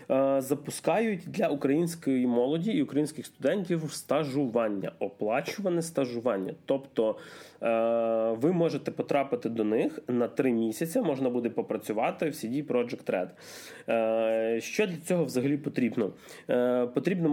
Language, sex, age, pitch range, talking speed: Ukrainian, male, 20-39, 125-165 Hz, 110 wpm